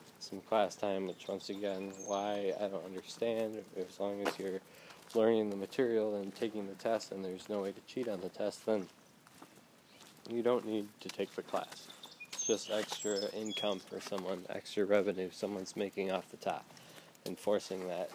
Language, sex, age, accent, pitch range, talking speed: English, male, 20-39, American, 100-115 Hz, 175 wpm